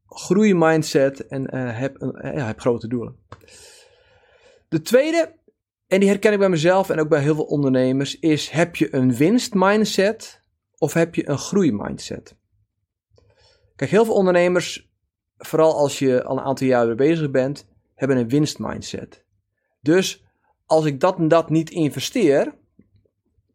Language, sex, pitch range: Dutch, male, 125-165 Hz